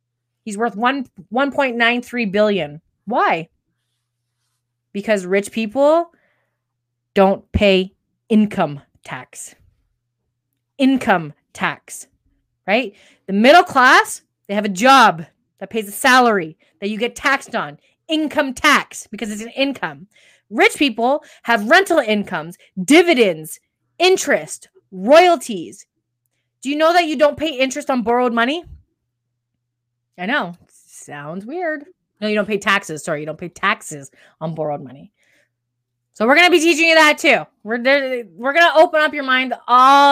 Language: English